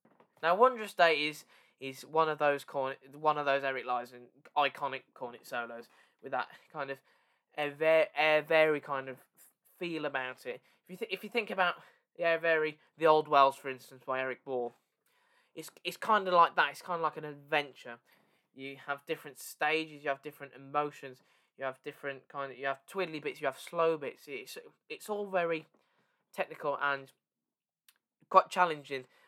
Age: 10-29